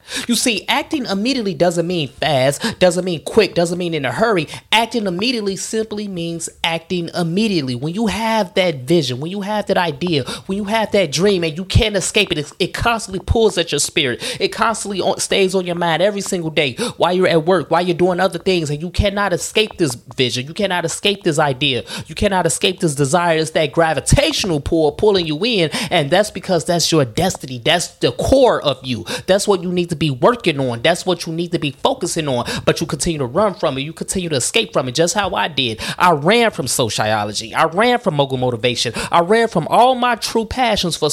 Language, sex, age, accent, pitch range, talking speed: English, male, 20-39, American, 150-195 Hz, 215 wpm